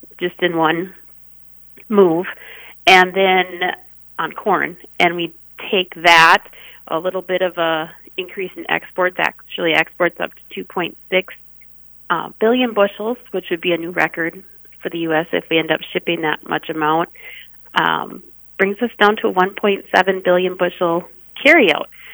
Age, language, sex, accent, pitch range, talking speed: 30-49, English, female, American, 165-200 Hz, 150 wpm